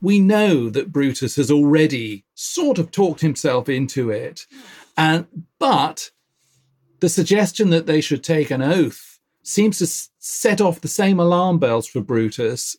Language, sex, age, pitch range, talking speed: English, male, 40-59, 135-175 Hz, 150 wpm